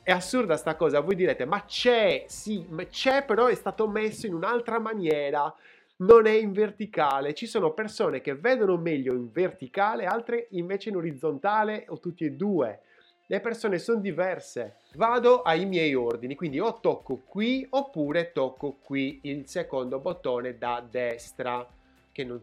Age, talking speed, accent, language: 30-49, 160 wpm, native, Italian